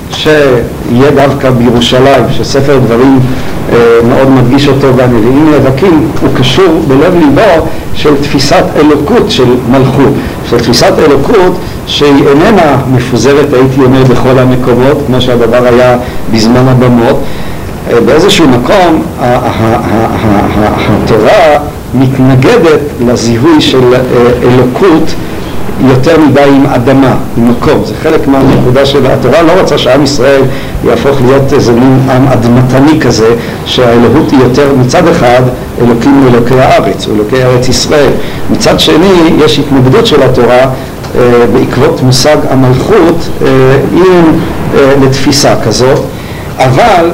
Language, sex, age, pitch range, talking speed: English, male, 60-79, 125-140 Hz, 110 wpm